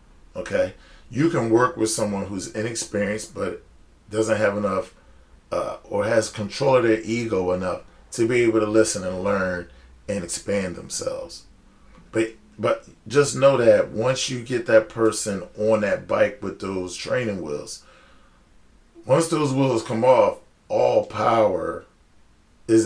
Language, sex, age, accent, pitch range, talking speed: English, male, 40-59, American, 100-125 Hz, 145 wpm